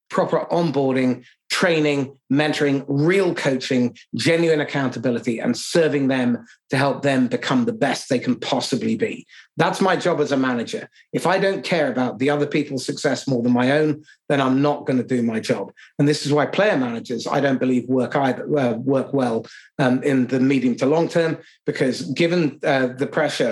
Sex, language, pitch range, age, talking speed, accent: male, English, 130-155 Hz, 30-49, 190 wpm, British